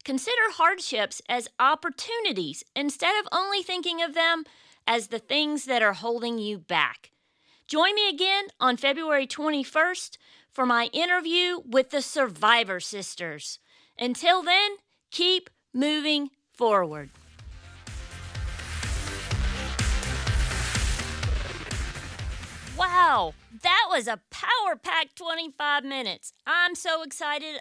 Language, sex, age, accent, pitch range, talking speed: English, female, 40-59, American, 210-320 Hz, 100 wpm